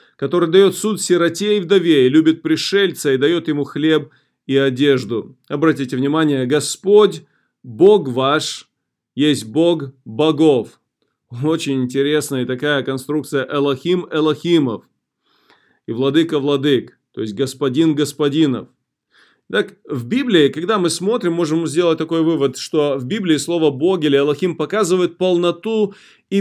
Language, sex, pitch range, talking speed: Russian, male, 145-185 Hz, 120 wpm